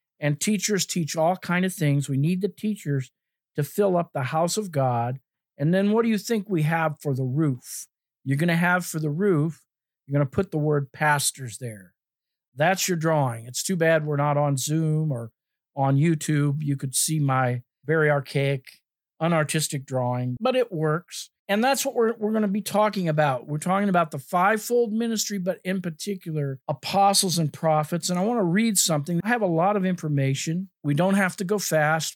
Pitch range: 145-195 Hz